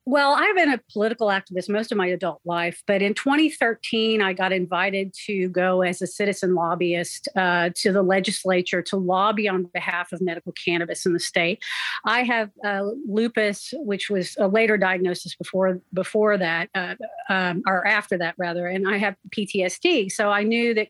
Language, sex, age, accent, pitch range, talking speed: English, female, 40-59, American, 180-215 Hz, 180 wpm